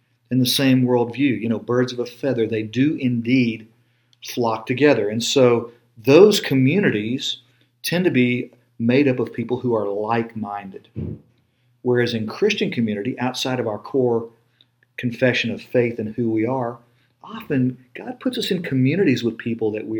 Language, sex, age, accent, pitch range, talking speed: English, male, 50-69, American, 115-130 Hz, 160 wpm